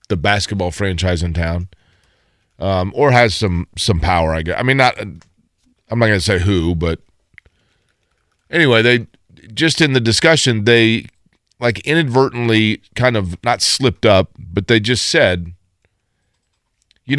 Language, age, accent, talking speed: English, 40-59, American, 145 wpm